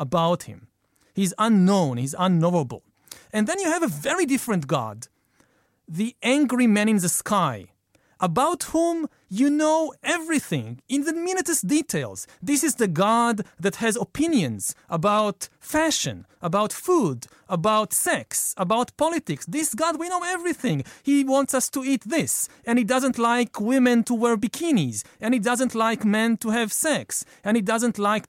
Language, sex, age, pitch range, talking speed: English, male, 40-59, 175-265 Hz, 160 wpm